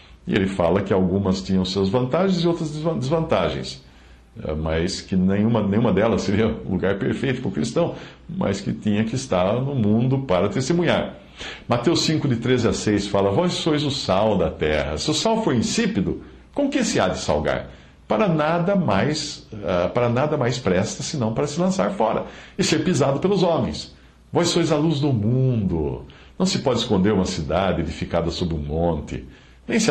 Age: 60-79